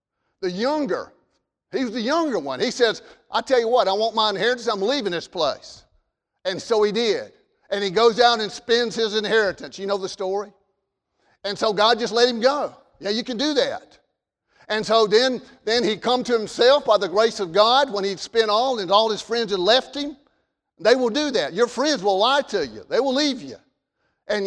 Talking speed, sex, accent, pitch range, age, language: 220 wpm, male, American, 205-250 Hz, 50-69, English